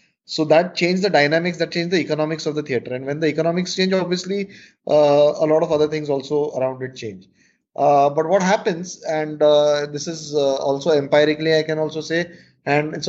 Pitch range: 150-180 Hz